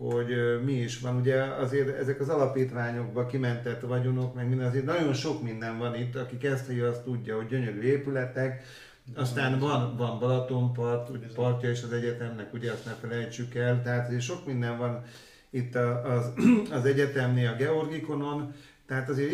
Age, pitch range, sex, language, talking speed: 40-59, 120-135 Hz, male, Hungarian, 165 wpm